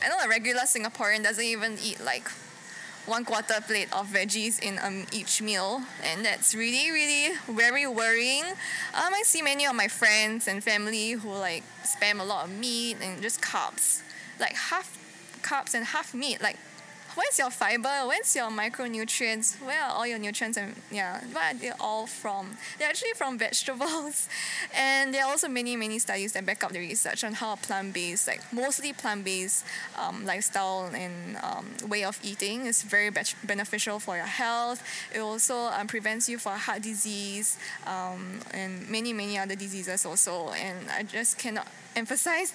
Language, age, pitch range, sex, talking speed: English, 10-29, 205-255 Hz, female, 175 wpm